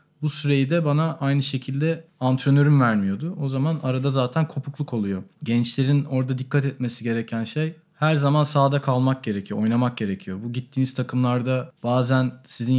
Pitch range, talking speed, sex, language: 110-135 Hz, 150 wpm, male, Turkish